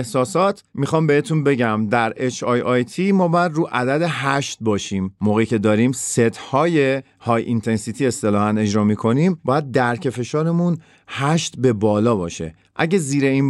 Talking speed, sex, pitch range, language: 140 wpm, male, 110-145 Hz, Persian